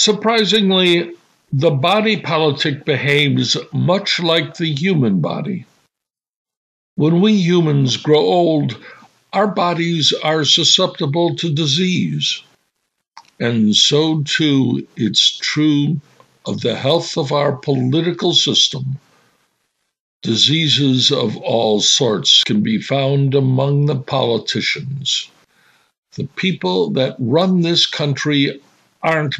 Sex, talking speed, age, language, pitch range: male, 100 wpm, 60-79, English, 135-170 Hz